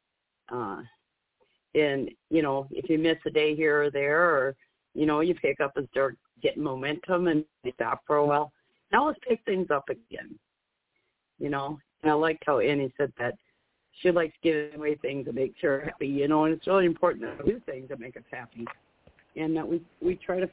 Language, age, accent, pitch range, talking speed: English, 50-69, American, 145-175 Hz, 205 wpm